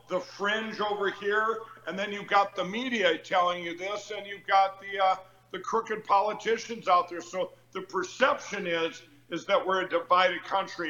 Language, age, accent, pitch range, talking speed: English, 60-79, American, 175-220 Hz, 180 wpm